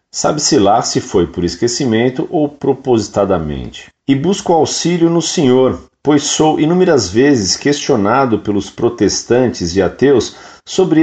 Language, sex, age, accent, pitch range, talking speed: Portuguese, male, 40-59, Brazilian, 105-150 Hz, 125 wpm